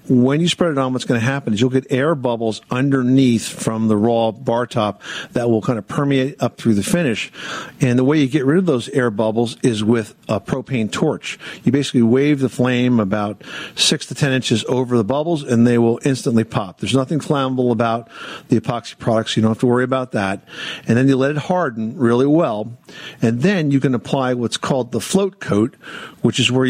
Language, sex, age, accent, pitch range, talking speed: English, male, 50-69, American, 115-140 Hz, 220 wpm